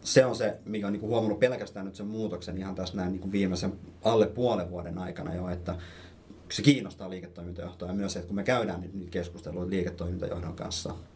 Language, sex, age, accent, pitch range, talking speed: Finnish, male, 30-49, native, 90-105 Hz, 175 wpm